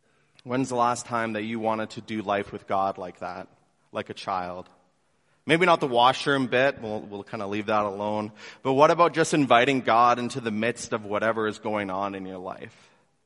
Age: 30-49